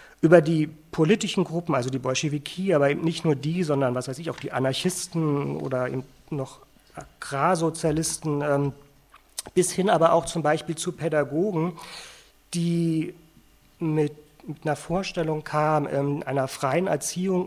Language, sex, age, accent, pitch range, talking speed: German, male, 40-59, German, 145-170 Hz, 135 wpm